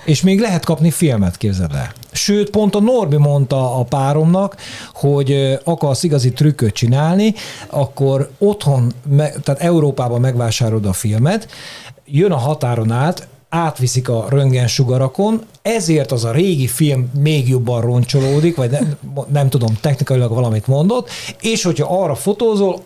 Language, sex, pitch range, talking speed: Hungarian, male, 120-155 Hz, 135 wpm